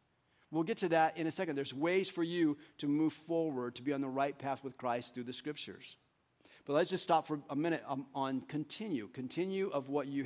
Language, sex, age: English, male, 50-69